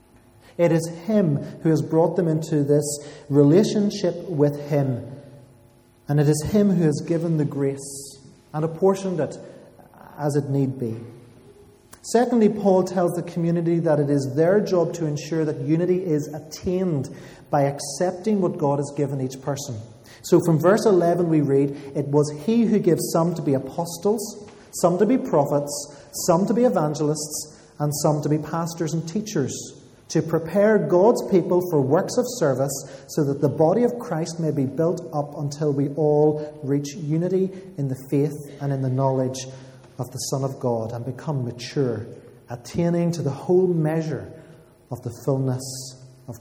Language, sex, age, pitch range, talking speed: English, male, 30-49, 140-180 Hz, 165 wpm